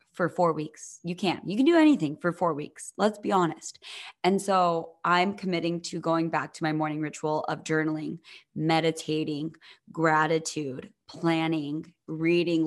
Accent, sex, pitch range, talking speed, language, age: American, female, 155-180 Hz, 145 wpm, English, 20-39